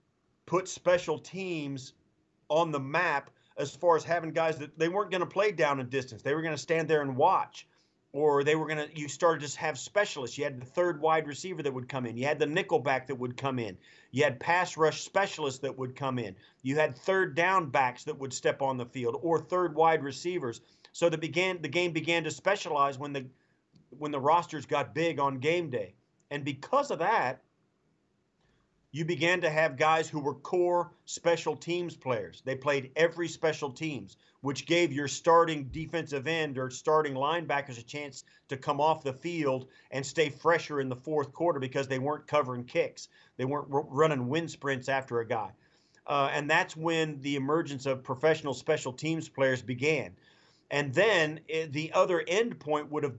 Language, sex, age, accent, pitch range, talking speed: English, male, 40-59, American, 135-165 Hz, 195 wpm